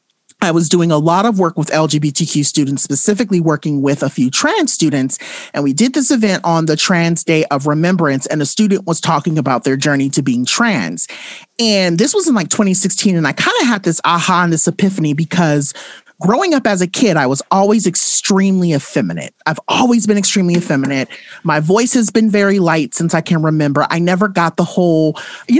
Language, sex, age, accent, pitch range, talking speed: English, male, 40-59, American, 155-205 Hz, 205 wpm